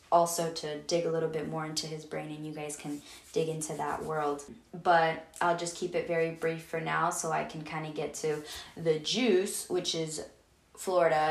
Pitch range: 165-190 Hz